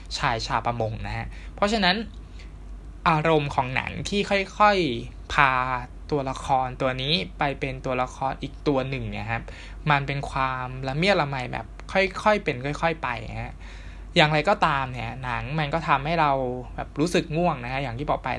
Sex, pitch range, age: male, 105-145 Hz, 20-39